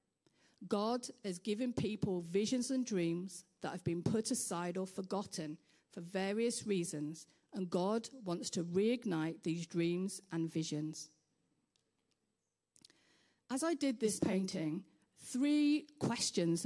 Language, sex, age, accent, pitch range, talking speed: English, female, 50-69, British, 170-220 Hz, 120 wpm